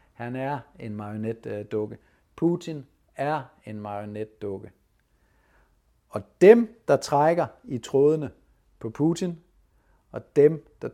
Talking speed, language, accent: 105 wpm, Danish, native